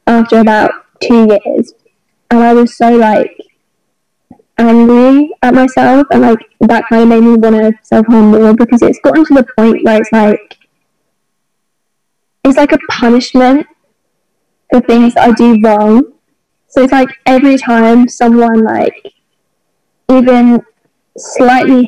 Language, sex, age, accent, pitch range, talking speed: English, female, 10-29, British, 225-255 Hz, 135 wpm